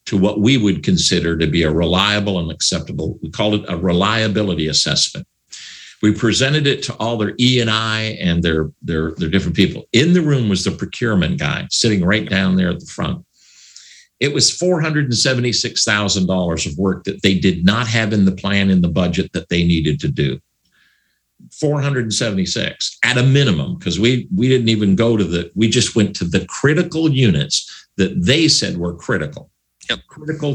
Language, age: English, 50-69